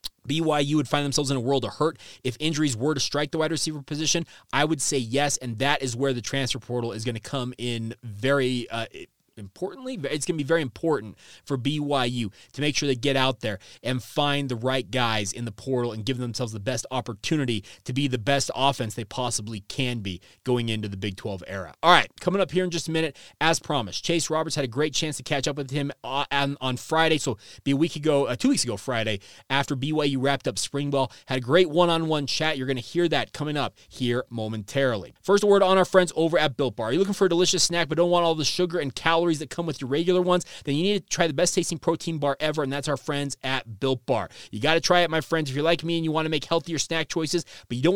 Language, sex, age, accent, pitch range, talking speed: English, male, 30-49, American, 125-160 Hz, 250 wpm